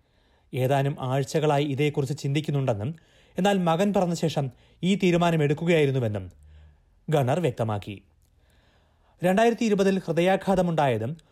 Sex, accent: male, native